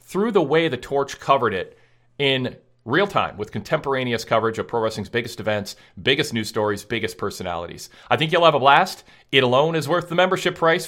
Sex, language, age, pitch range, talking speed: male, English, 40-59, 115-155 Hz, 200 wpm